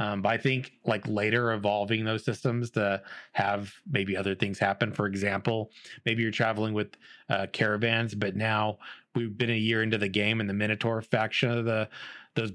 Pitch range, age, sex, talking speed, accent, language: 105-125 Hz, 30-49, male, 185 wpm, American, English